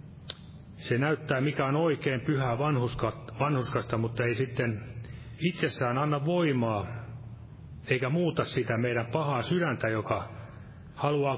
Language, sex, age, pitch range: Finnish, male, 30-49, 115-140 Hz